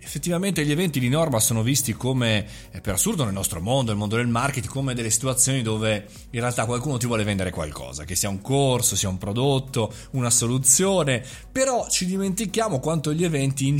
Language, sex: Italian, male